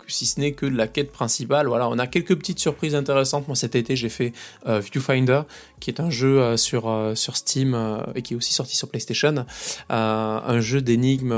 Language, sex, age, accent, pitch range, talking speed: French, male, 20-39, French, 115-140 Hz, 225 wpm